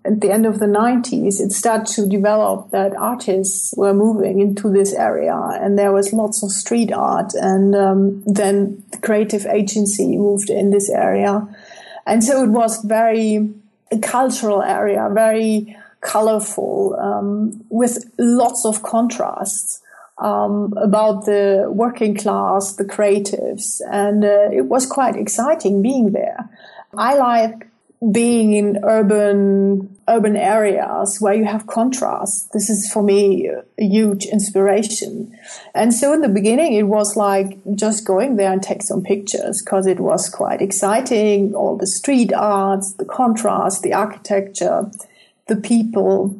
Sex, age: female, 30-49